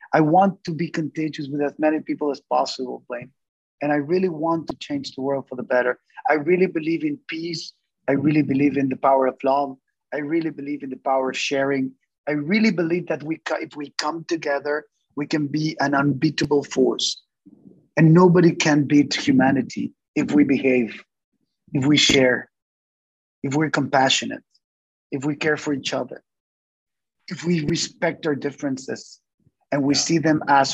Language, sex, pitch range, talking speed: English, male, 135-155 Hz, 170 wpm